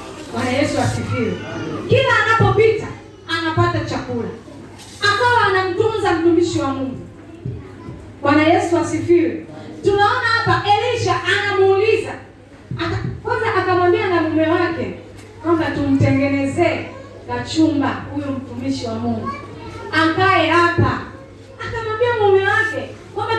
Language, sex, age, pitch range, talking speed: Swahili, female, 30-49, 275-370 Hz, 100 wpm